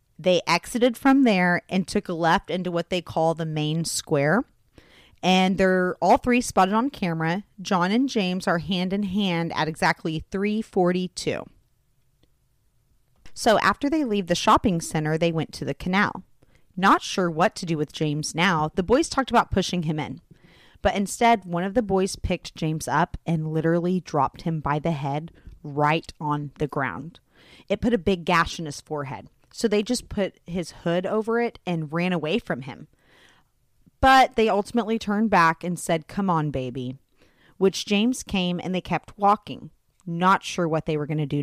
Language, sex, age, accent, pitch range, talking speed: English, female, 30-49, American, 160-210 Hz, 180 wpm